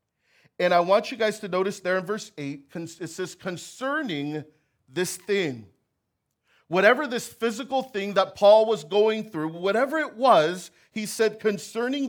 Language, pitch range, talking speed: English, 175-235 Hz, 155 wpm